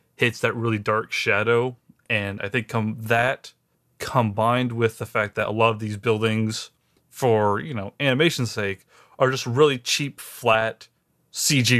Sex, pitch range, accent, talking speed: male, 105-130 Hz, American, 160 wpm